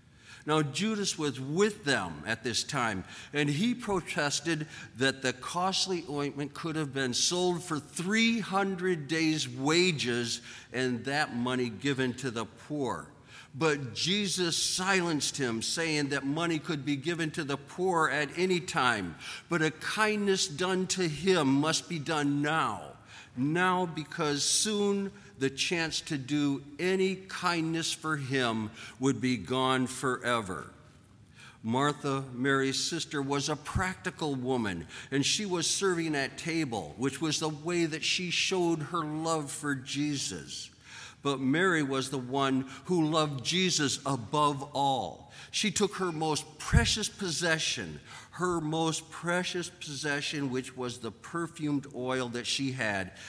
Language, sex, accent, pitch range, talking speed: English, male, American, 130-165 Hz, 140 wpm